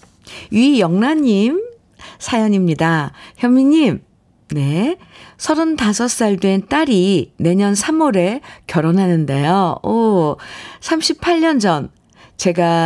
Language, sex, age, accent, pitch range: Korean, female, 50-69, native, 165-230 Hz